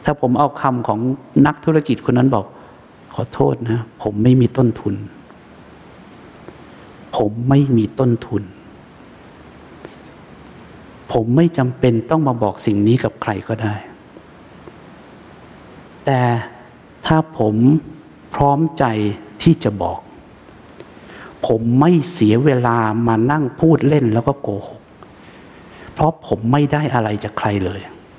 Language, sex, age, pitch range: English, male, 60-79, 110-155 Hz